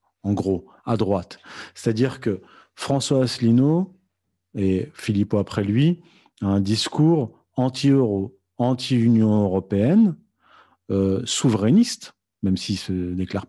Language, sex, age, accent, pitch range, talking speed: French, male, 40-59, French, 100-130 Hz, 110 wpm